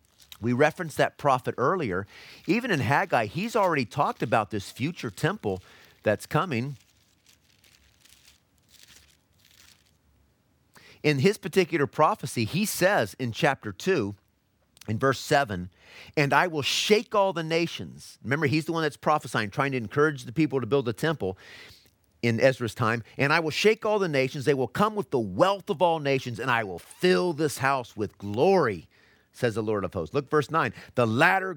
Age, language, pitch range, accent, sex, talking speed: 40-59, English, 110-160 Hz, American, male, 165 wpm